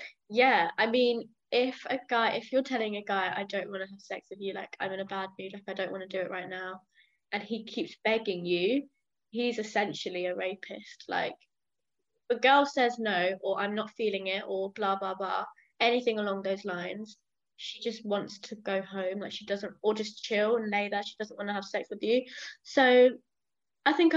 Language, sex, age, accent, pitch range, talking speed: English, female, 20-39, British, 195-240 Hz, 215 wpm